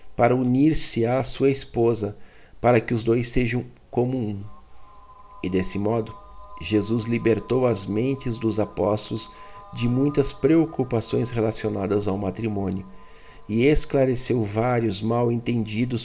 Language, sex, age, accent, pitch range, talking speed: Portuguese, male, 50-69, Brazilian, 105-130 Hz, 120 wpm